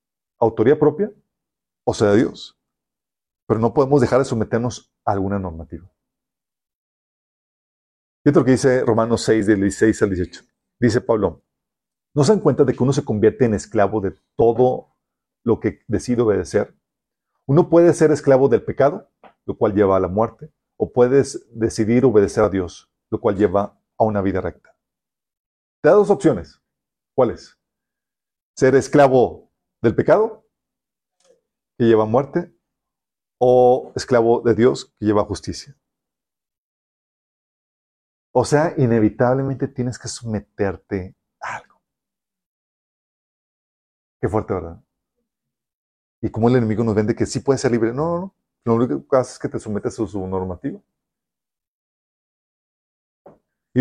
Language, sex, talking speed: Spanish, male, 140 wpm